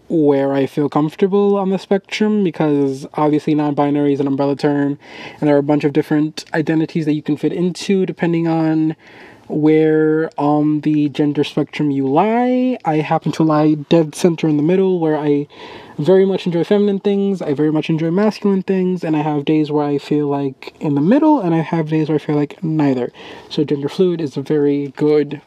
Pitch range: 145-165 Hz